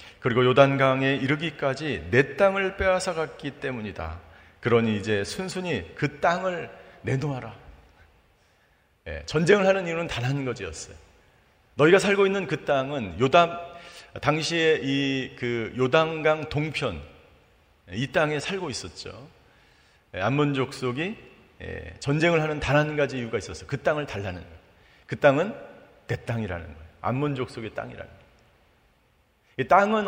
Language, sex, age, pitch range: Korean, male, 40-59, 110-170 Hz